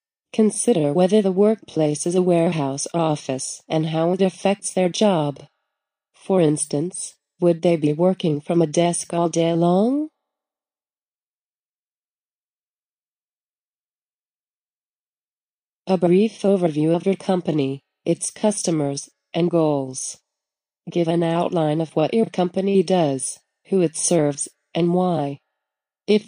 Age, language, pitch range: 30-49, English, 160-195 Hz